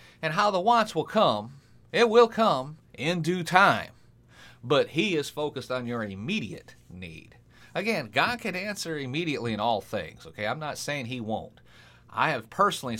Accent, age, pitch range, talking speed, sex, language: American, 40-59, 115-140 Hz, 170 wpm, male, English